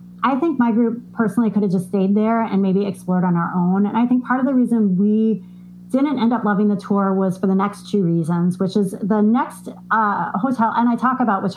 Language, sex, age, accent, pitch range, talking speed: English, female, 30-49, American, 185-225 Hz, 245 wpm